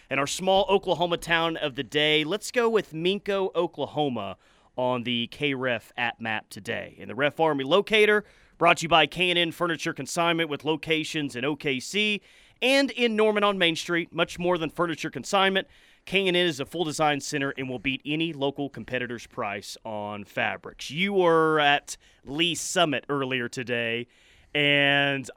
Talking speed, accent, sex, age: 165 wpm, American, male, 30-49